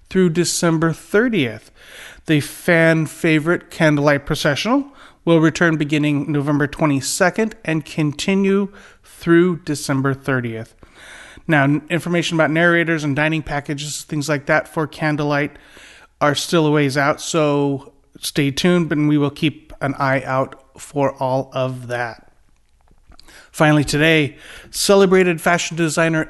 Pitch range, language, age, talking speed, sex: 145-190 Hz, English, 30-49, 120 wpm, male